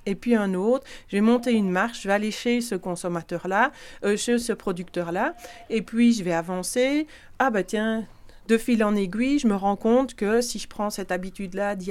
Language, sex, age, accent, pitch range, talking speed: French, female, 40-59, French, 180-230 Hz, 210 wpm